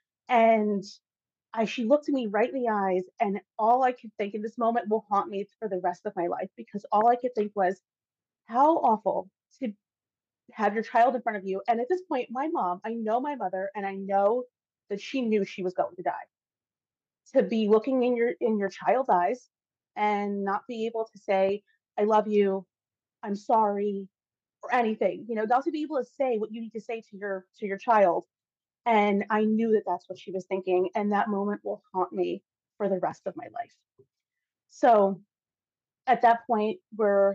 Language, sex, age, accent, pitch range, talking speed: English, female, 30-49, American, 195-235 Hz, 210 wpm